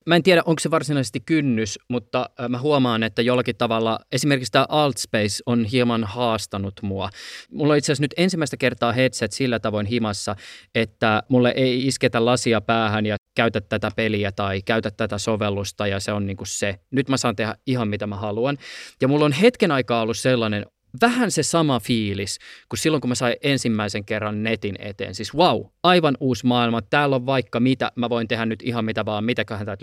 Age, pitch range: 20-39, 105-150 Hz